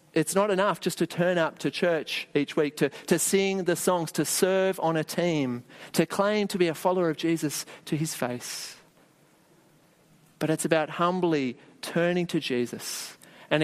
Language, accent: English, Australian